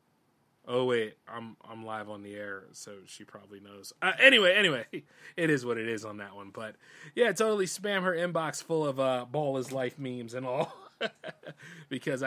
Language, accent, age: English, American, 30-49